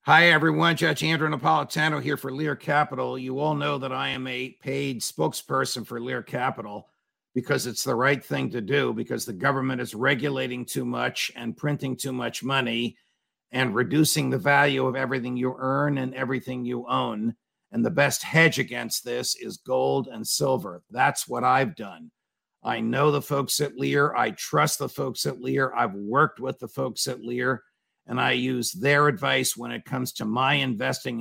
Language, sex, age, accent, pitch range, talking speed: English, male, 50-69, American, 125-145 Hz, 185 wpm